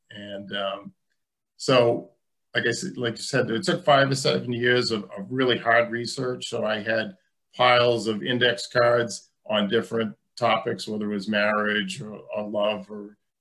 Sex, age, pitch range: male, 50-69, 105-125 Hz